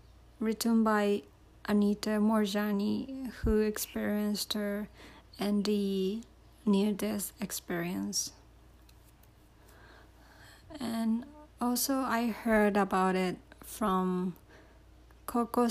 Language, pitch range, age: Japanese, 180-210 Hz, 30-49